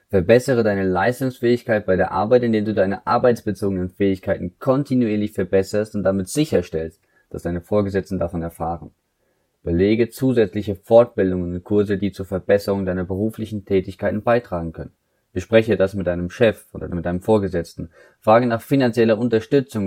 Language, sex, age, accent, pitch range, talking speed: German, male, 20-39, German, 90-110 Hz, 140 wpm